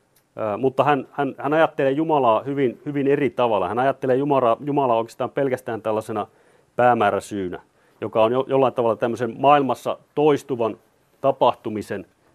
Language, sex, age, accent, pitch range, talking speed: Finnish, male, 30-49, native, 110-140 Hz, 130 wpm